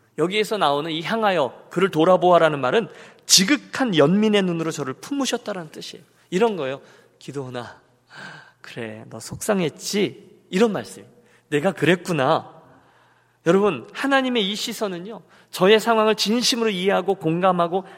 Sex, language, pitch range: male, Korean, 135-210 Hz